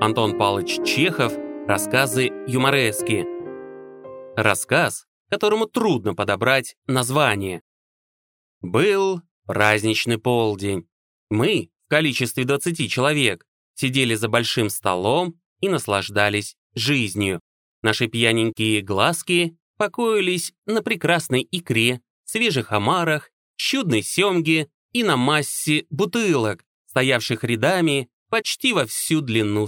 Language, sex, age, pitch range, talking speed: Russian, male, 30-49, 105-165 Hz, 95 wpm